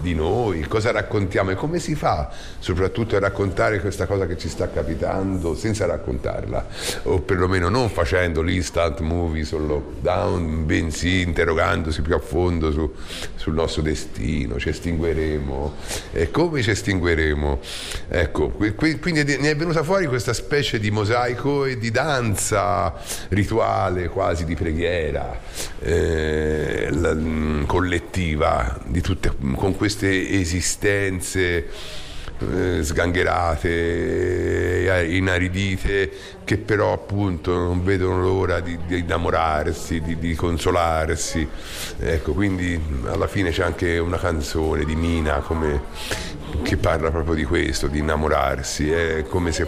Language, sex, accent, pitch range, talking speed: Italian, male, native, 80-95 Hz, 125 wpm